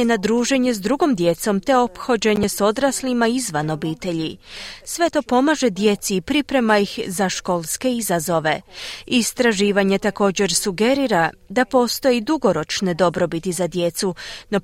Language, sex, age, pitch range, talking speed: Croatian, female, 30-49, 185-255 Hz, 125 wpm